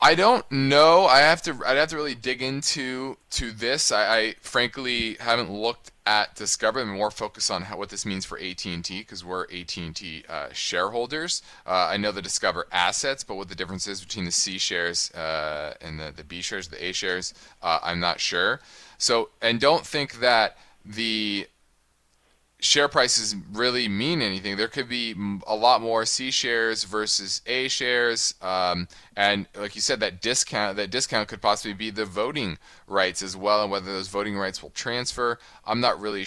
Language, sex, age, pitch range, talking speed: English, male, 20-39, 95-115 Hz, 195 wpm